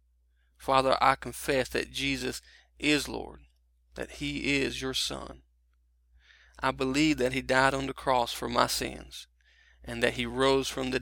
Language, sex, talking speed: English, male, 160 wpm